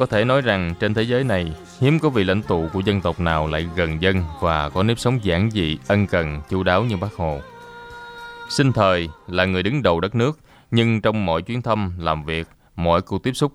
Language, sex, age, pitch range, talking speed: Vietnamese, male, 20-39, 85-110 Hz, 230 wpm